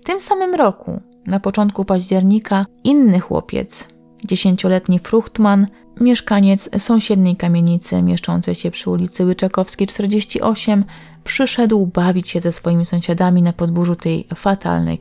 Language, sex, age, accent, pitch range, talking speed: Polish, female, 30-49, native, 170-220 Hz, 120 wpm